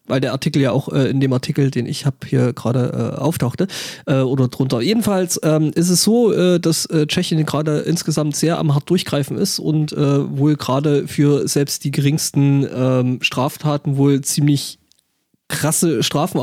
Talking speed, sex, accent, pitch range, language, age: 180 wpm, male, German, 130-155 Hz, German, 30-49